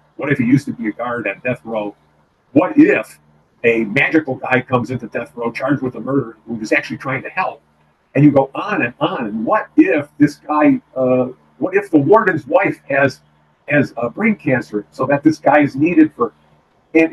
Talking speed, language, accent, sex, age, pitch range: 210 wpm, English, American, male, 50-69, 100-145 Hz